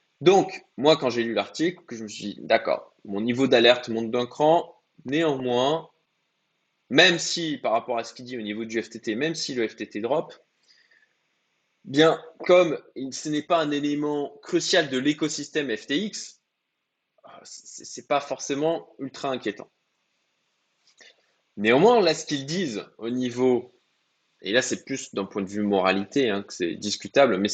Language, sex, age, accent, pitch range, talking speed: French, male, 20-39, French, 115-165 Hz, 160 wpm